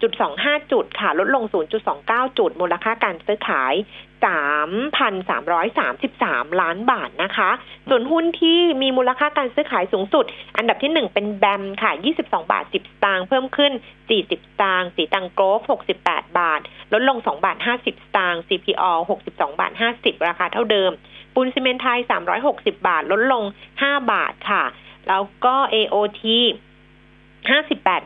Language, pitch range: Thai, 195-275 Hz